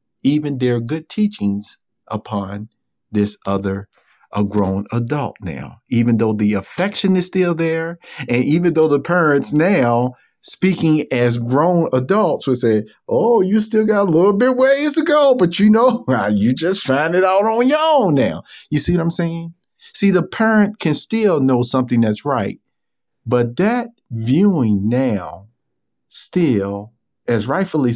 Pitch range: 105-180 Hz